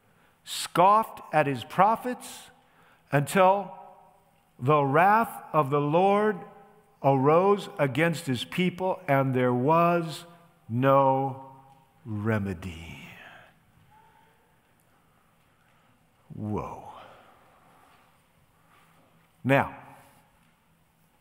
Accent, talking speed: American, 60 wpm